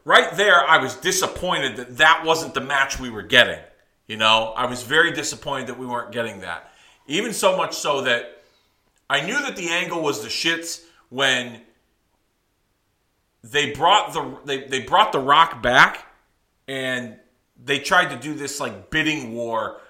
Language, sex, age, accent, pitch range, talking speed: English, male, 40-59, American, 105-135 Hz, 170 wpm